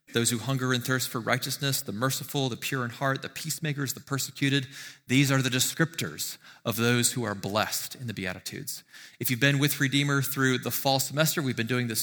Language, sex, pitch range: English, male, 115-140 Hz